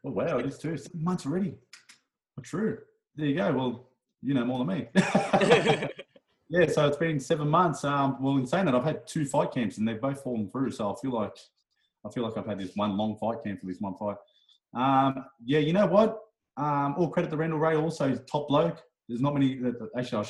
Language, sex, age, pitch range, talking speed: English, male, 20-39, 110-145 Hz, 235 wpm